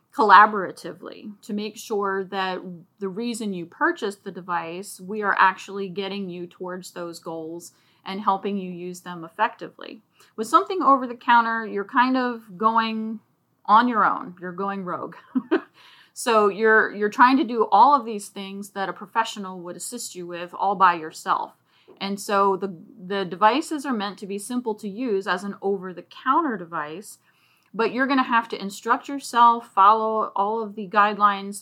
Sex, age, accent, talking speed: female, 30-49, American, 165 wpm